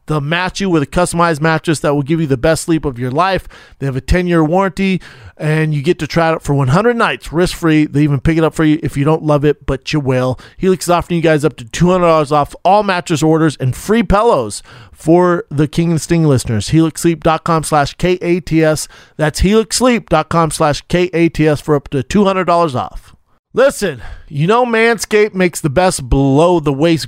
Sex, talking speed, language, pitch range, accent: male, 200 wpm, English, 145-170 Hz, American